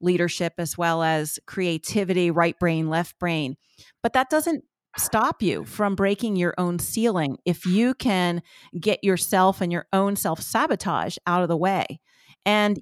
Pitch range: 170-215 Hz